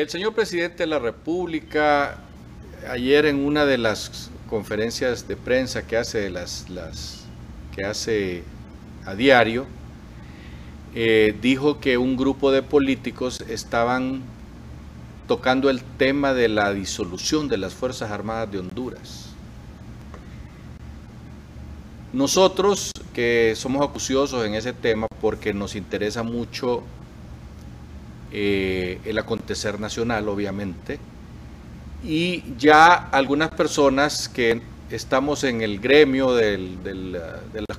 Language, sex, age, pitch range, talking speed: Spanish, male, 50-69, 95-135 Hz, 110 wpm